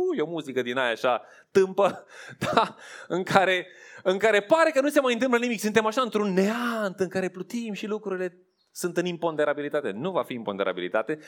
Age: 20-39